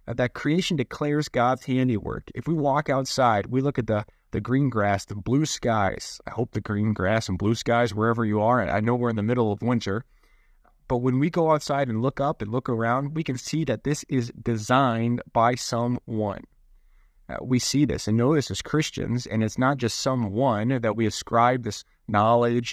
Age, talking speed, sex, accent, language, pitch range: 30-49, 205 wpm, male, American, English, 110-135 Hz